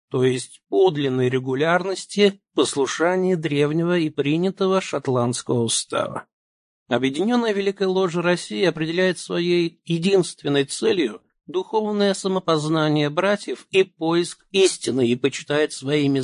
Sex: male